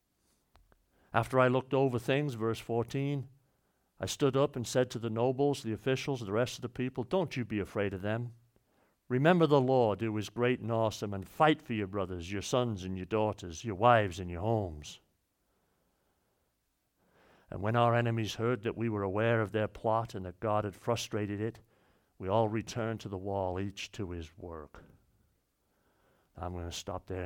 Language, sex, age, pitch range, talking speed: English, male, 60-79, 95-120 Hz, 185 wpm